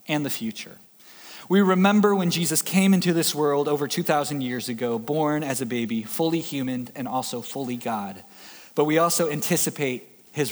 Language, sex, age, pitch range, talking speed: English, male, 20-39, 145-185 Hz, 170 wpm